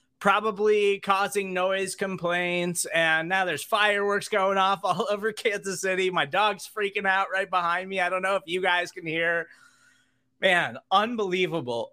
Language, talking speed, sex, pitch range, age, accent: English, 155 wpm, male, 155-210 Hz, 20-39, American